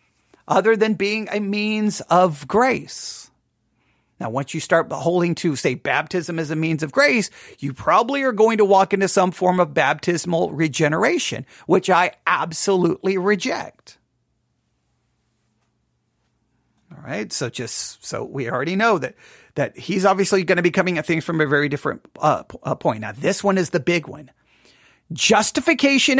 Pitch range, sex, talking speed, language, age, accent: 180-265 Hz, male, 155 wpm, English, 40-59, American